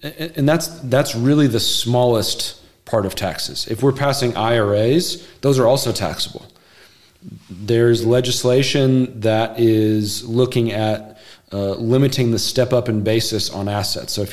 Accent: American